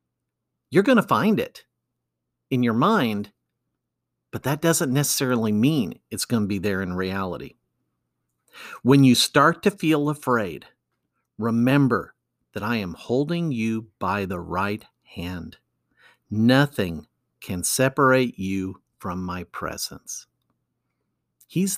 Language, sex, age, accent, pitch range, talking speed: English, male, 50-69, American, 95-135 Hz, 115 wpm